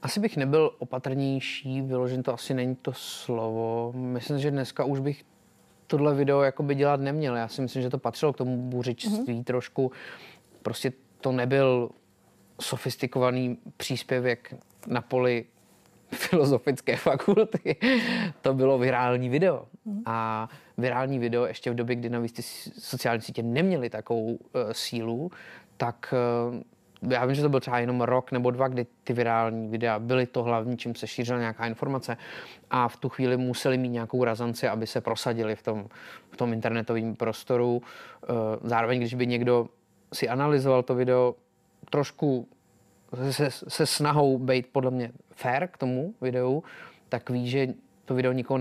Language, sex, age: Czech, male, 30-49